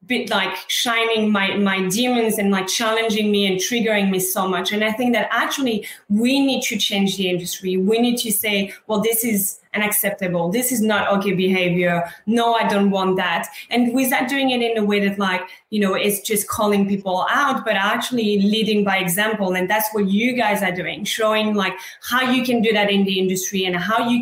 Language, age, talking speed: English, 20-39, 210 wpm